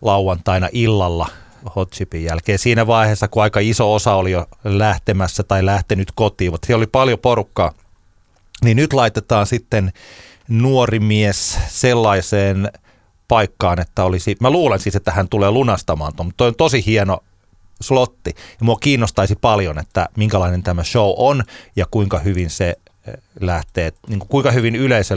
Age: 30-49